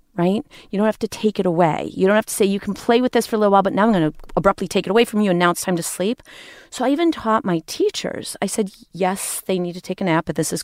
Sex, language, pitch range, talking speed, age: female, English, 180-225 Hz, 320 wpm, 40-59